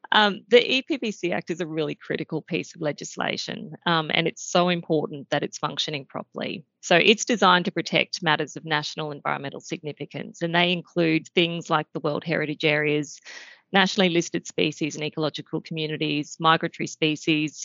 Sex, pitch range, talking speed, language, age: female, 155-185 Hz, 160 wpm, English, 30-49